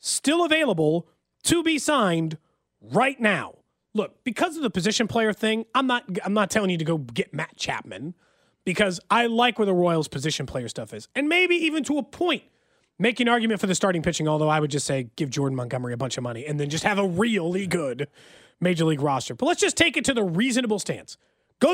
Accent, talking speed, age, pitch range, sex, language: American, 220 wpm, 30-49, 165-260 Hz, male, English